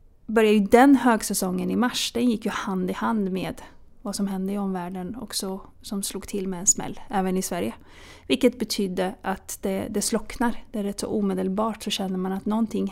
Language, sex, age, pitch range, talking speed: Swedish, female, 30-49, 190-225 Hz, 205 wpm